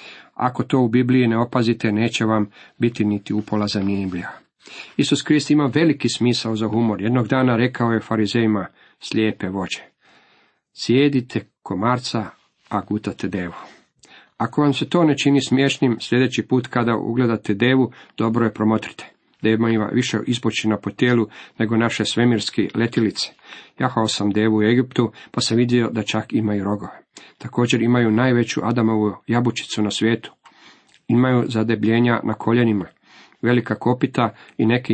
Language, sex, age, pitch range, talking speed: Croatian, male, 50-69, 110-125 Hz, 145 wpm